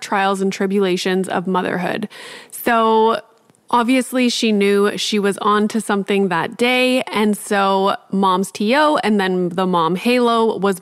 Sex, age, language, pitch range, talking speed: female, 20-39, English, 190-225 Hz, 145 wpm